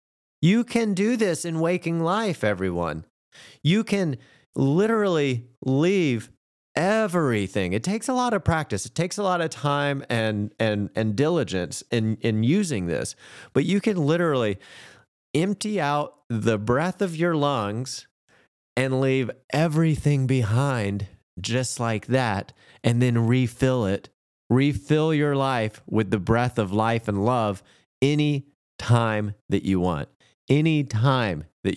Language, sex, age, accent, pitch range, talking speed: English, male, 30-49, American, 105-155 Hz, 140 wpm